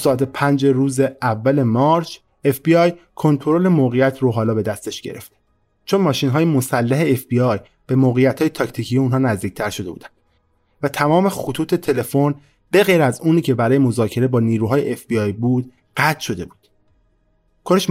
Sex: male